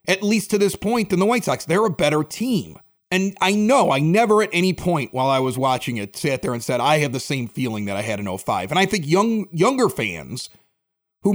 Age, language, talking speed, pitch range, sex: 30-49, English, 250 wpm, 135-195 Hz, male